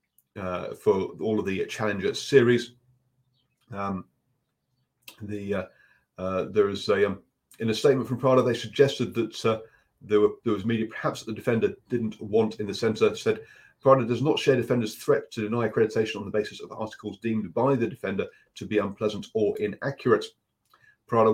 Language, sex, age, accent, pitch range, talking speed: English, male, 30-49, British, 105-135 Hz, 175 wpm